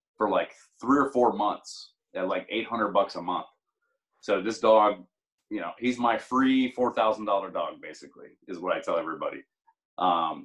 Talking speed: 180 wpm